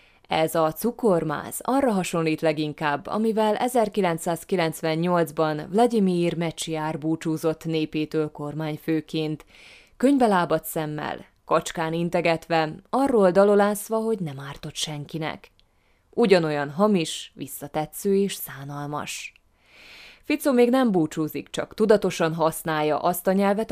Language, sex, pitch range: Hungarian, female, 155-195 Hz